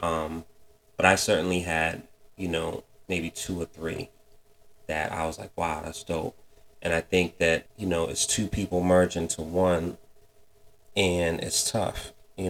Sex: male